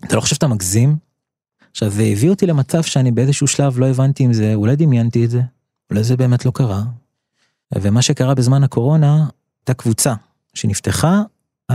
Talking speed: 170 wpm